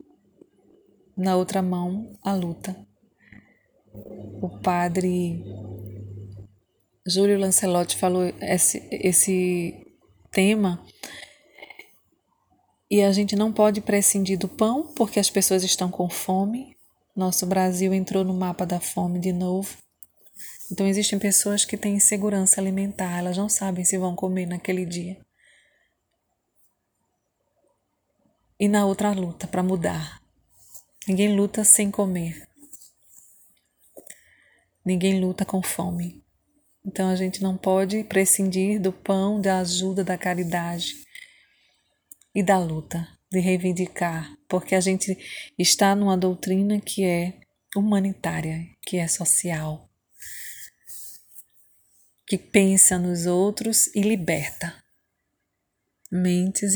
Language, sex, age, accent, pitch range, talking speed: Portuguese, female, 20-39, Brazilian, 180-200 Hz, 110 wpm